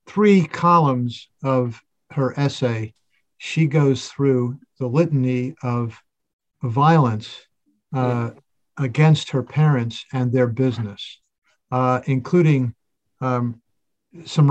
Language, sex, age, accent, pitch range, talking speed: English, male, 50-69, American, 120-150 Hz, 95 wpm